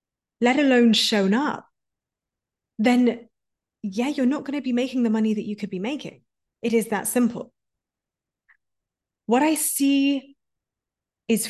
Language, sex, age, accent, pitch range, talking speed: English, female, 20-39, British, 195-245 Hz, 140 wpm